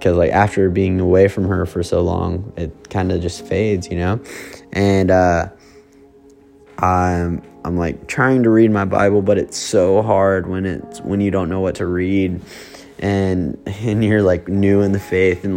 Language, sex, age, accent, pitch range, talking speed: English, male, 20-39, American, 90-100 Hz, 190 wpm